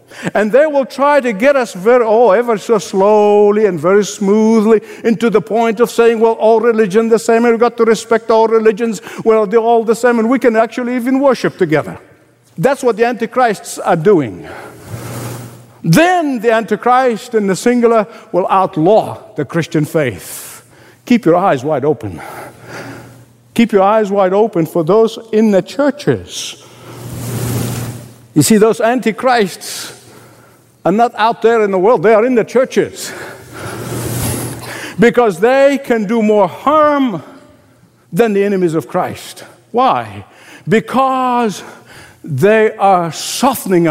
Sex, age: male, 60-79